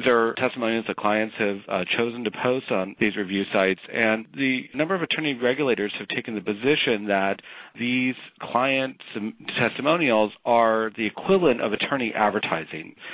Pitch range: 100-125 Hz